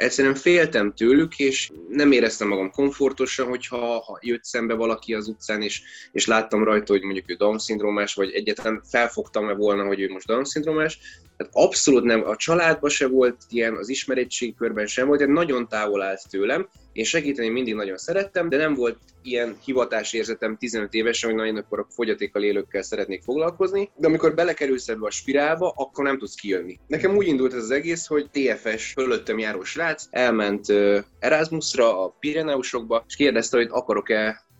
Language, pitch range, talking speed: Hungarian, 110-155 Hz, 170 wpm